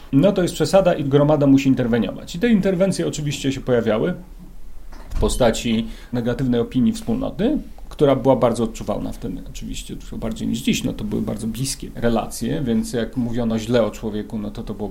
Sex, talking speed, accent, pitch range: male, 180 wpm, native, 120-145 Hz